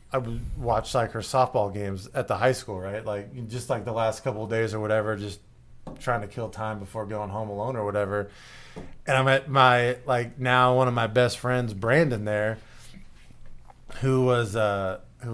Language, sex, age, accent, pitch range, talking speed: English, male, 20-39, American, 105-140 Hz, 195 wpm